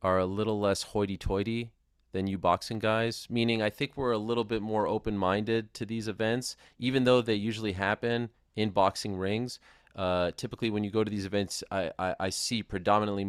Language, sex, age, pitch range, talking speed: English, male, 30-49, 100-125 Hz, 190 wpm